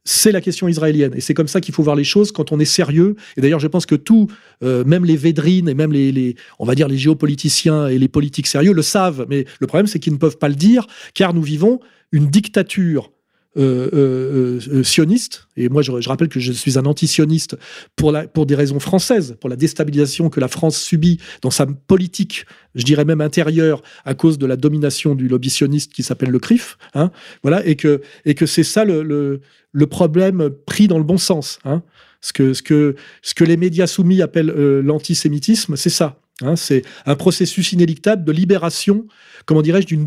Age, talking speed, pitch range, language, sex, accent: 40-59, 215 wpm, 145-180 Hz, French, male, French